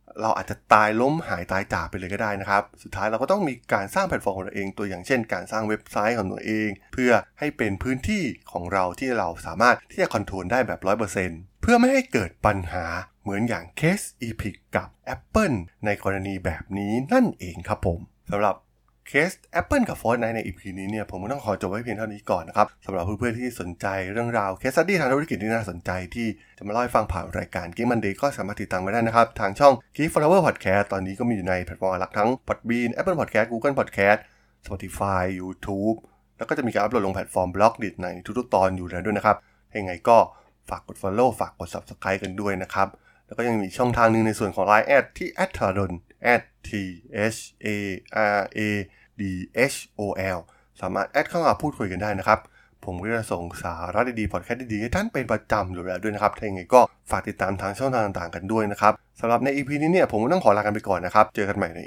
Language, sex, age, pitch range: Thai, male, 20-39, 95-115 Hz